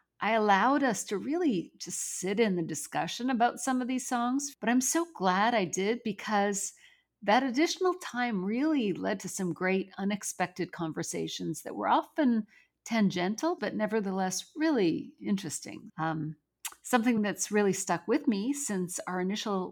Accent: American